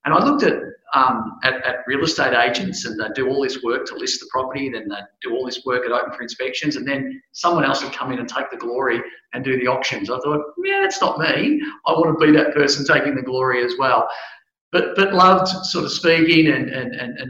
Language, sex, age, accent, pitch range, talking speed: English, male, 40-59, Australian, 130-180 Hz, 245 wpm